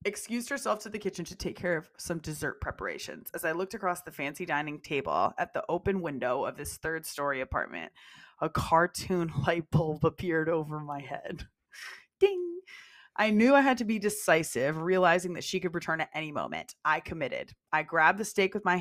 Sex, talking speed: female, 195 wpm